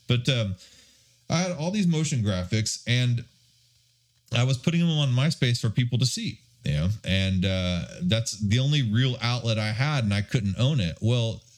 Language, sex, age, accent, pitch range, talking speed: English, male, 30-49, American, 100-130 Hz, 190 wpm